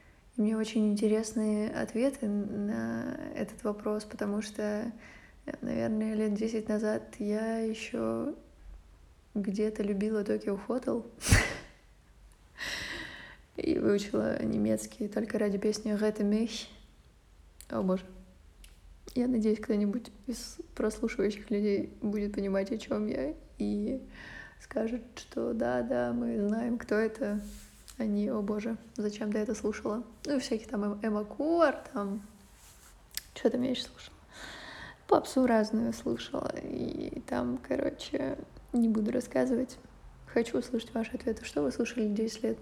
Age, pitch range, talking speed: 20-39, 205-230 Hz, 115 wpm